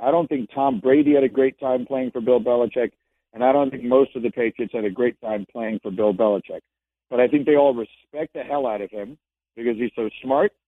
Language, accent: English, American